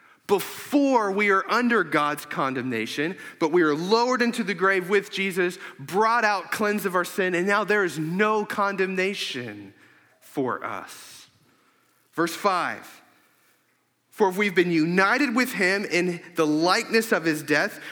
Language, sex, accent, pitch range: English, male, American, 175-235 Hz